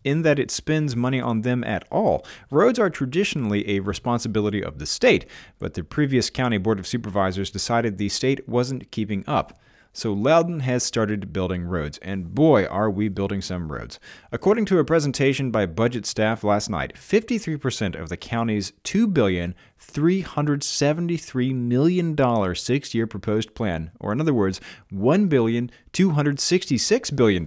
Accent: American